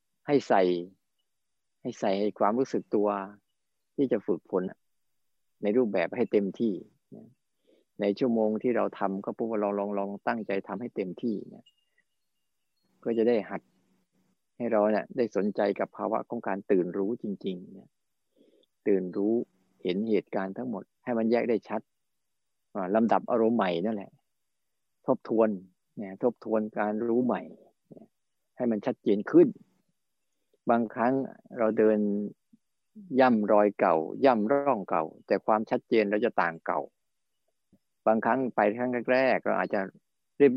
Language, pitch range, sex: Thai, 100-120 Hz, male